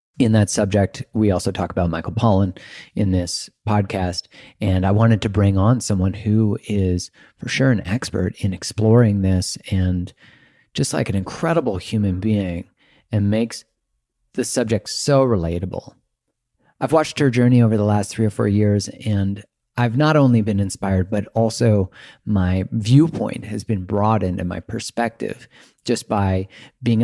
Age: 30-49